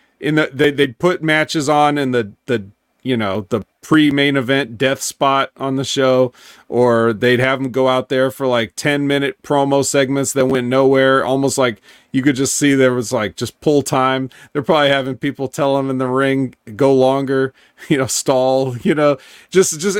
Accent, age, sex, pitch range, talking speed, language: American, 40-59, male, 130-155 Hz, 200 wpm, English